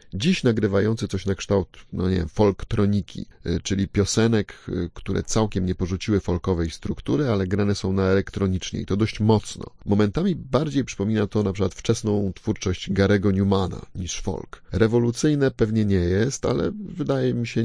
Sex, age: male, 30-49